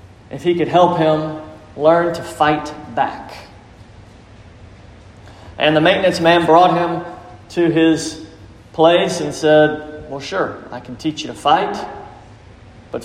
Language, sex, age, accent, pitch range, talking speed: English, male, 40-59, American, 105-170 Hz, 135 wpm